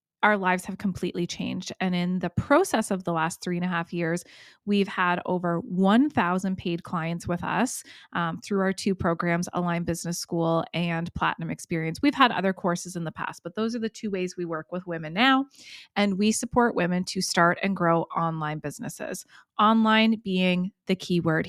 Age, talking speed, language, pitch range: 20-39, 195 wpm, English, 175-220 Hz